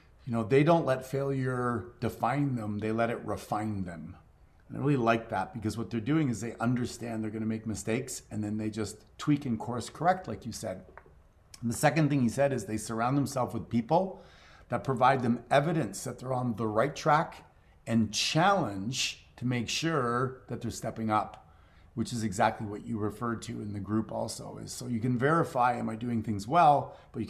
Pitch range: 110-135 Hz